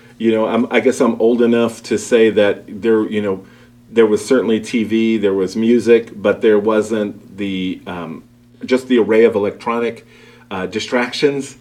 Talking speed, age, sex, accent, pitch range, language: 165 wpm, 40-59, male, American, 105-120 Hz, English